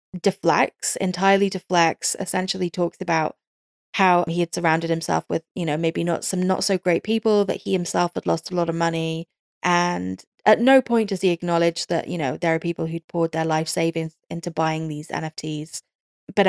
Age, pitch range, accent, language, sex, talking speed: 10-29, 165-195 Hz, British, English, female, 195 wpm